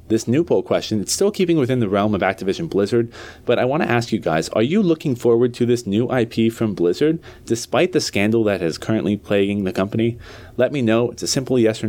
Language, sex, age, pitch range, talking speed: English, male, 30-49, 100-130 Hz, 235 wpm